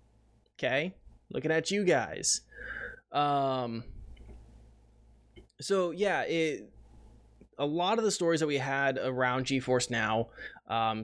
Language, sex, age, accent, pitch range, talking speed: English, male, 20-39, American, 120-150 Hz, 115 wpm